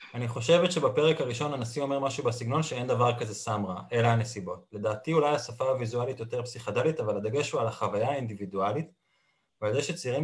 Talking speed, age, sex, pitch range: 175 wpm, 20-39, male, 110-150 Hz